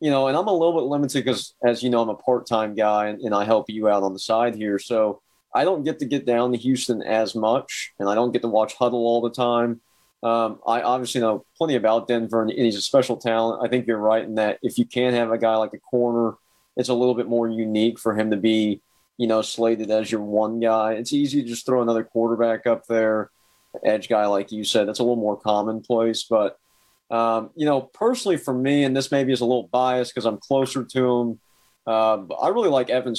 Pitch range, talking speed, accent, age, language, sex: 110-130 Hz, 240 wpm, American, 30-49, English, male